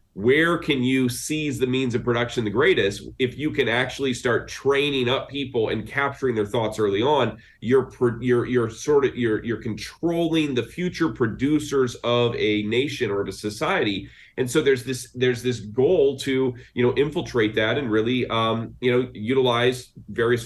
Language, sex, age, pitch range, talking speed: English, male, 30-49, 110-130 Hz, 180 wpm